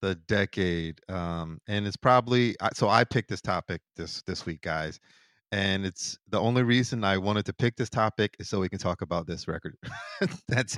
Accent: American